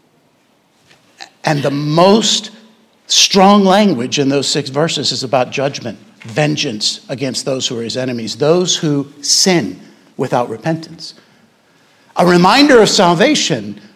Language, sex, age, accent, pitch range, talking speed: English, male, 60-79, American, 150-205 Hz, 120 wpm